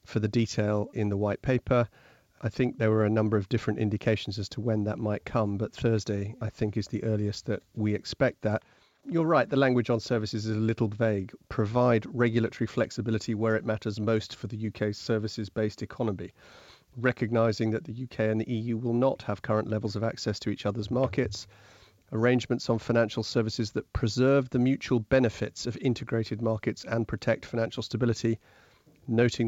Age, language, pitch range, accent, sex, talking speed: 40-59, English, 110-120 Hz, British, male, 185 wpm